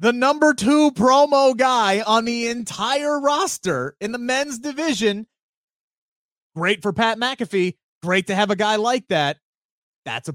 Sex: male